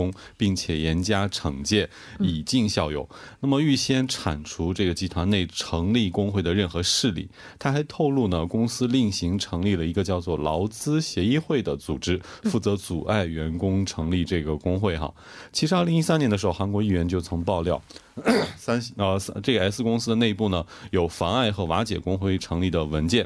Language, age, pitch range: Korean, 30-49, 90-115 Hz